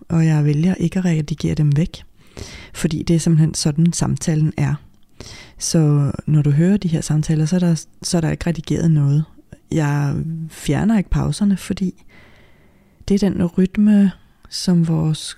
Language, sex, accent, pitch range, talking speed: Danish, female, native, 145-170 Hz, 165 wpm